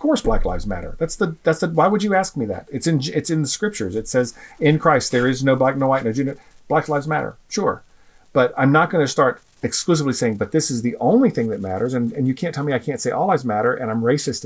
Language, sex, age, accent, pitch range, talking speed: English, male, 40-59, American, 120-165 Hz, 280 wpm